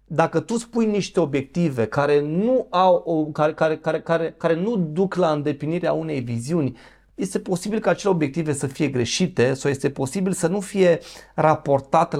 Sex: male